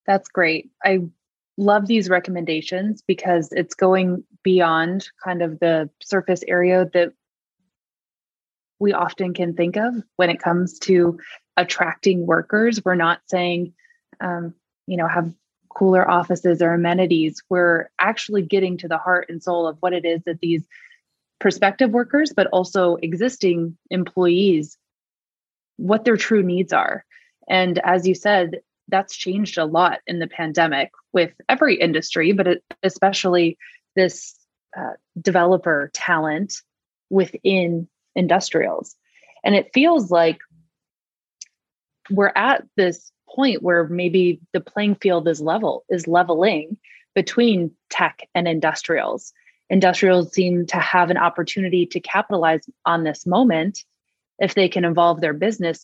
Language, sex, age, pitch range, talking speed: English, female, 20-39, 170-195 Hz, 130 wpm